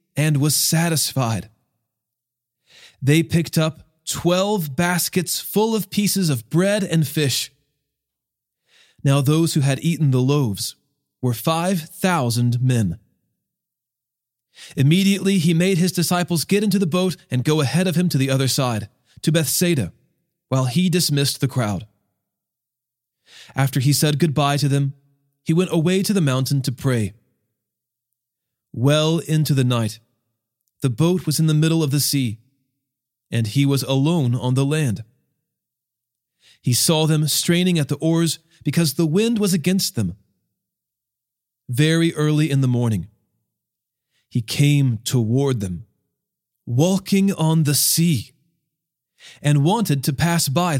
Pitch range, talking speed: 125-170 Hz, 135 wpm